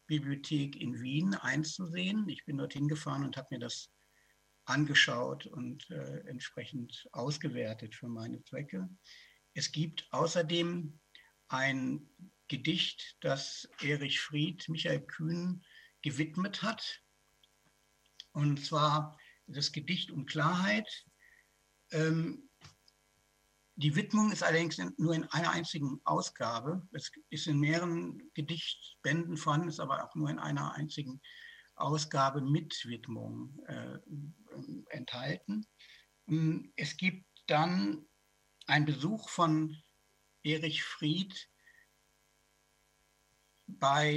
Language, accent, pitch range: German, German, 140-170 Hz